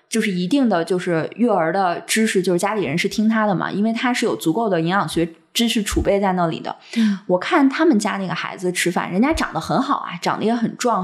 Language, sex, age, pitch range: Chinese, female, 20-39, 170-235 Hz